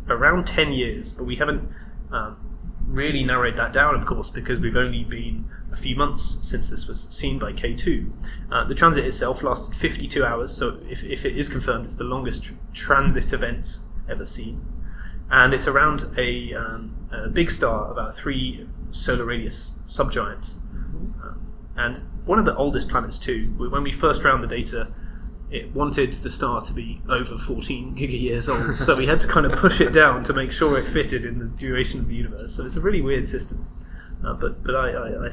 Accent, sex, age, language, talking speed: British, male, 20-39, English, 200 wpm